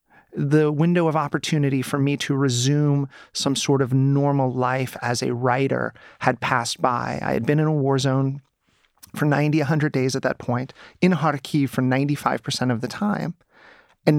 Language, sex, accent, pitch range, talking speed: Ukrainian, male, American, 140-170 Hz, 175 wpm